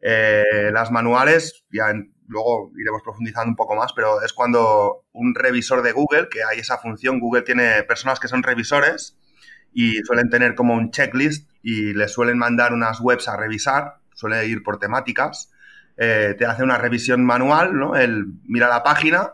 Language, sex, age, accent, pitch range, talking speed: Spanish, male, 30-49, Spanish, 115-135 Hz, 175 wpm